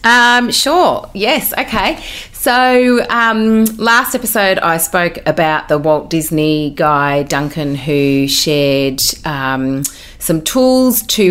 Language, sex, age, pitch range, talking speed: English, female, 30-49, 145-185 Hz, 115 wpm